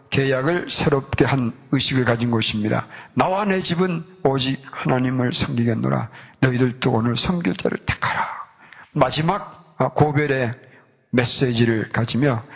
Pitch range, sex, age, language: 120-165 Hz, male, 40-59, Korean